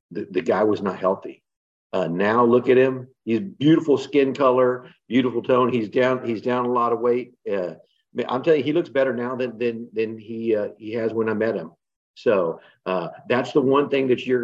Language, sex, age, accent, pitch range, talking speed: English, male, 50-69, American, 100-130 Hz, 215 wpm